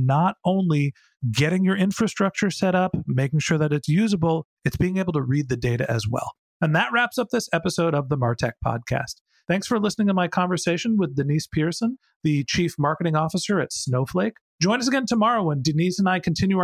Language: English